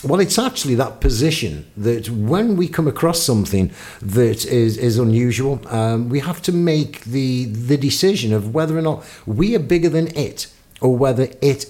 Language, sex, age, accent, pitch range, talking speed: English, male, 50-69, British, 110-150 Hz, 180 wpm